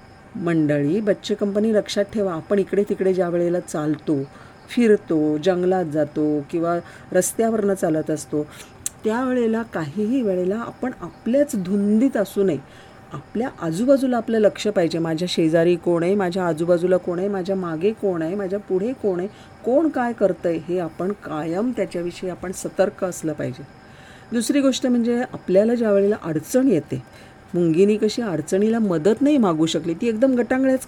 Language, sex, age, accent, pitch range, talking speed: Marathi, female, 40-59, native, 170-215 Hz, 145 wpm